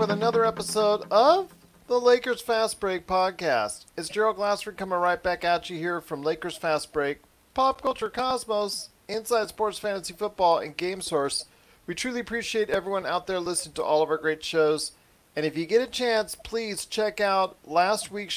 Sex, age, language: male, 40-59, English